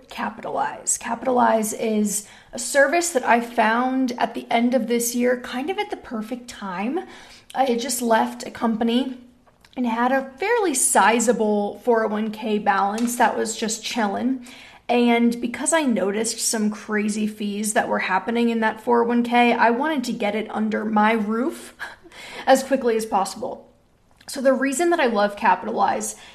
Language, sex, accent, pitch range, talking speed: English, female, American, 220-250 Hz, 155 wpm